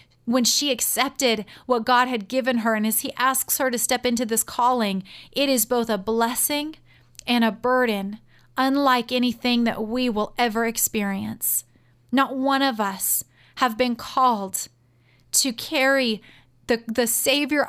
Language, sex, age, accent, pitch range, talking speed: English, female, 30-49, American, 225-275 Hz, 155 wpm